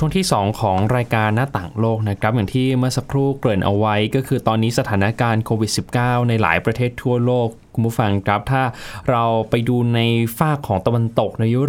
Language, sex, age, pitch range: Thai, male, 20-39, 110-140 Hz